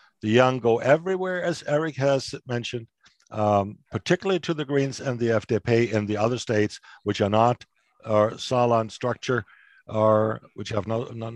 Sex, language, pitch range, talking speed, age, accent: male, English, 105-145 Hz, 170 wpm, 60-79, American